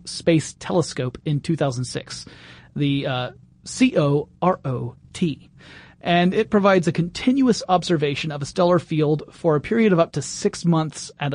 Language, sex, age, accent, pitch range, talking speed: English, male, 30-49, American, 145-180 Hz, 160 wpm